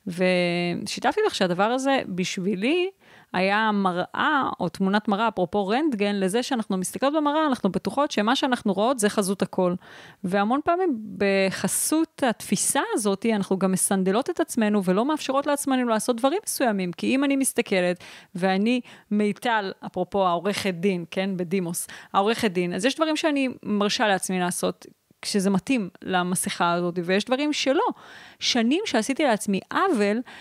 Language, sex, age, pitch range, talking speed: Hebrew, female, 30-49, 195-260 Hz, 140 wpm